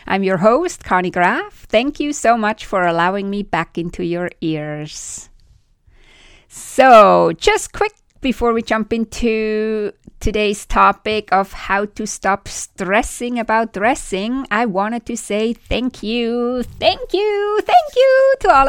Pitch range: 195-270 Hz